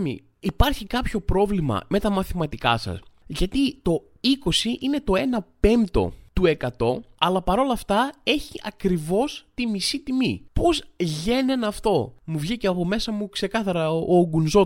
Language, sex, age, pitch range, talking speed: Greek, male, 20-39, 155-240 Hz, 140 wpm